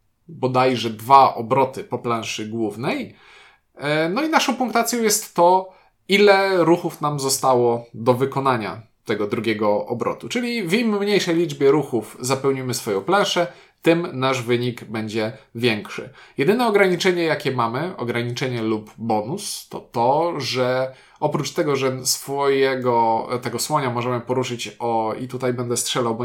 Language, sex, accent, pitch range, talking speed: Polish, male, native, 120-170 Hz, 135 wpm